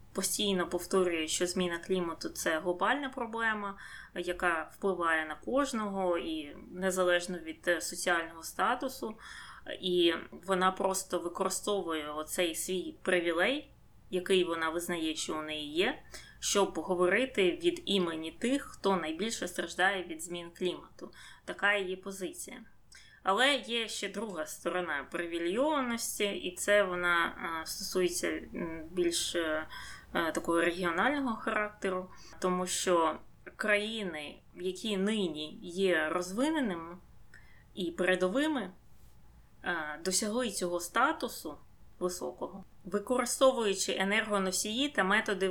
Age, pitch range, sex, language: 20-39, 175-220 Hz, female, Ukrainian